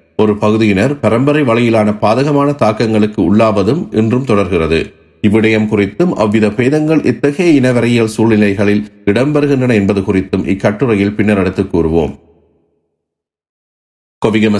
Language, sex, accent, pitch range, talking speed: Tamil, male, native, 100-125 Hz, 100 wpm